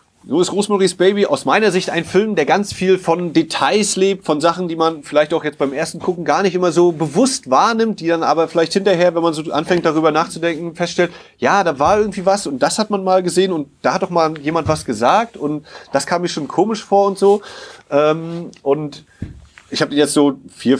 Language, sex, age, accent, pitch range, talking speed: German, male, 30-49, German, 145-190 Hz, 220 wpm